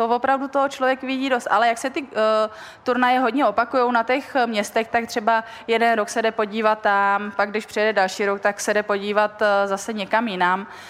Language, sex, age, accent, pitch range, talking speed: Czech, female, 20-39, native, 200-235 Hz, 210 wpm